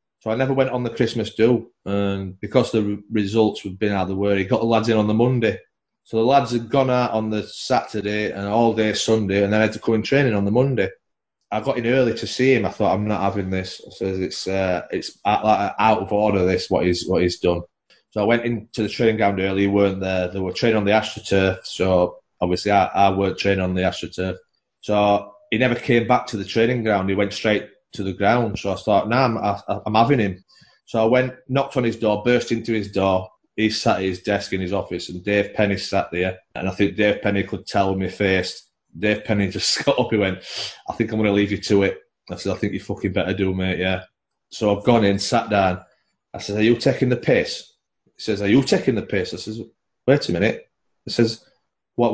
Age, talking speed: 30-49, 250 wpm